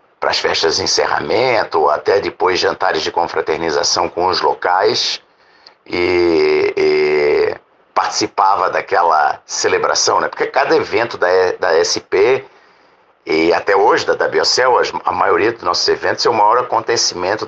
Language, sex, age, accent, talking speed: Portuguese, male, 60-79, Brazilian, 135 wpm